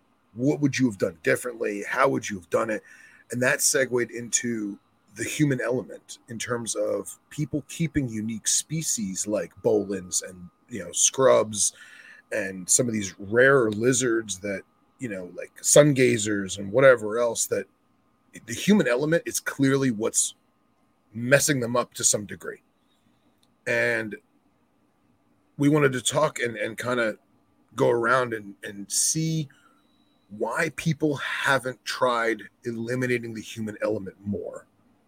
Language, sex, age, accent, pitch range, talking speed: English, male, 30-49, American, 110-150 Hz, 140 wpm